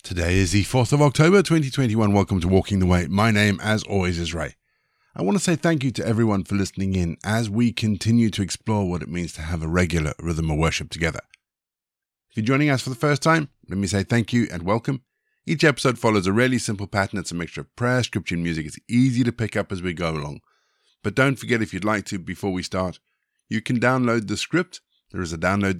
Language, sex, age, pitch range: English, male, 50-69, 85-115 Hz